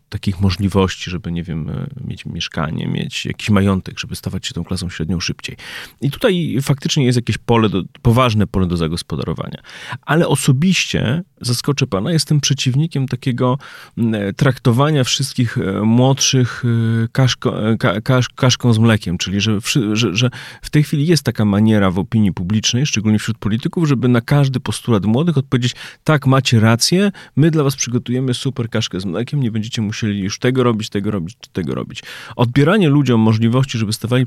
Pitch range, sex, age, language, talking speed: 105-135 Hz, male, 30-49, Polish, 150 wpm